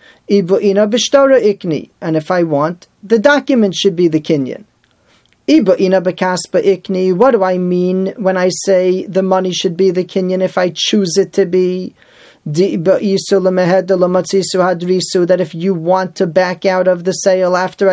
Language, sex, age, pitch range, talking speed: English, male, 40-59, 165-200 Hz, 135 wpm